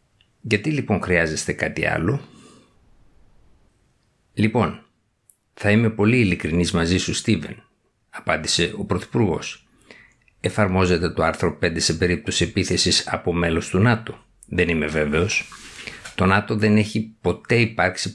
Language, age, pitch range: Greek, 50-69, 90-105 Hz